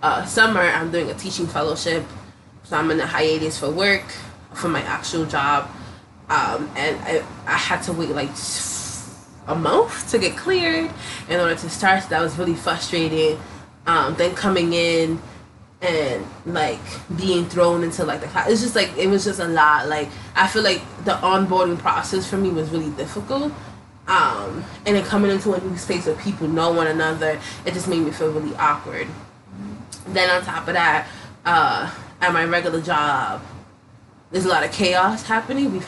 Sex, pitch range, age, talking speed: female, 150-190 Hz, 20-39, 185 wpm